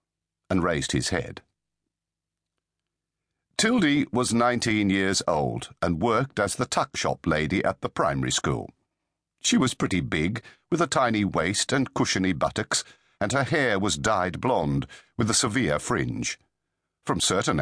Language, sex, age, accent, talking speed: English, male, 50-69, British, 145 wpm